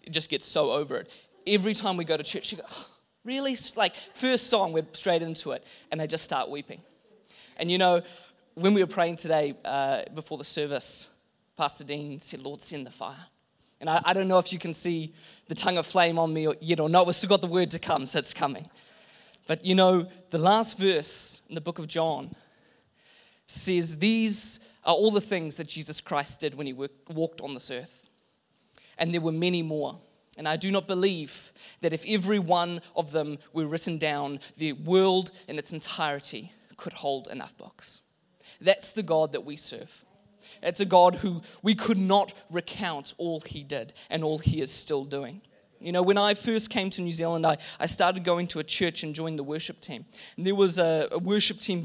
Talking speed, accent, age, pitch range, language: 205 wpm, Australian, 20-39, 155-195 Hz, English